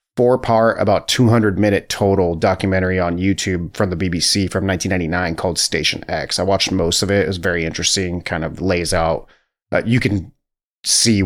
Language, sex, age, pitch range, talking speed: English, male, 30-49, 90-110 Hz, 170 wpm